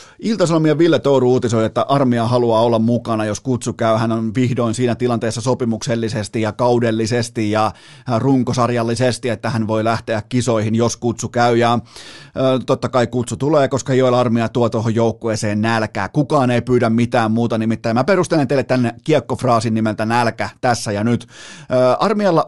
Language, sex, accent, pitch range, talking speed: Finnish, male, native, 115-135 Hz, 155 wpm